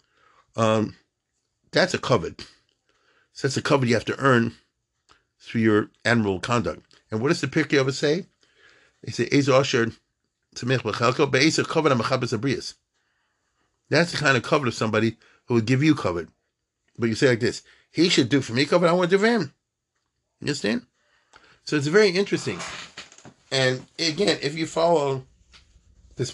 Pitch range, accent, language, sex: 110-140 Hz, American, English, male